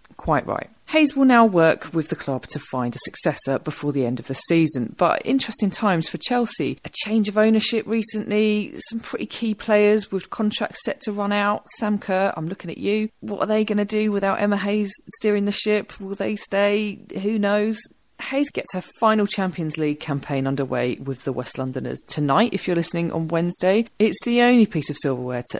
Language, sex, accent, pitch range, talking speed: English, female, British, 135-210 Hz, 205 wpm